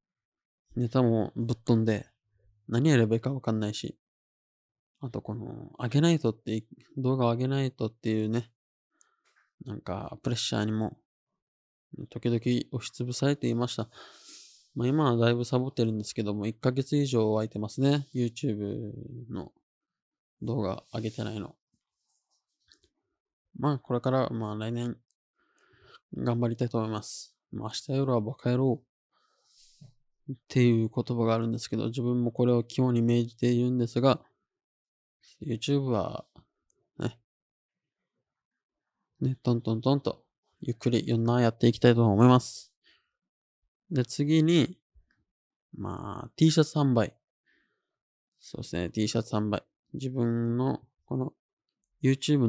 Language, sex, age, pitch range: Japanese, male, 20-39, 115-130 Hz